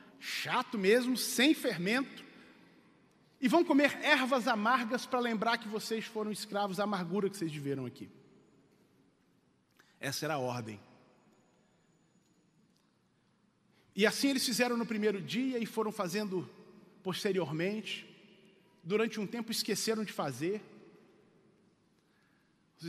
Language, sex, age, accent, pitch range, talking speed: Portuguese, male, 40-59, Brazilian, 205-275 Hz, 115 wpm